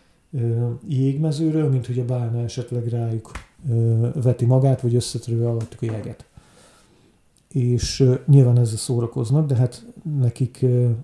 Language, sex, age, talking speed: Hungarian, male, 40-59, 115 wpm